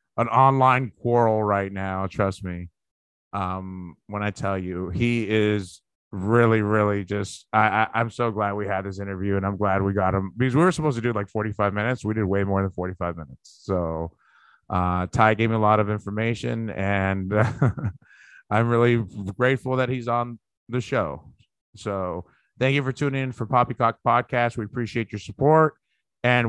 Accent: American